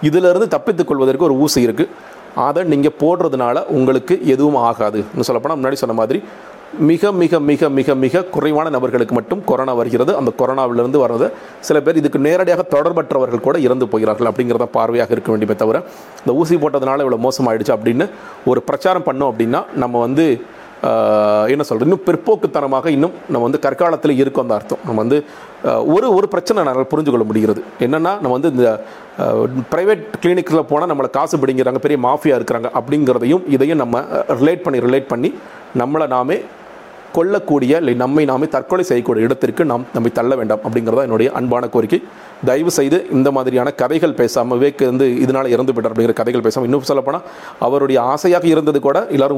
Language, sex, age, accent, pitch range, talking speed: Tamil, male, 40-59, native, 120-150 Hz, 155 wpm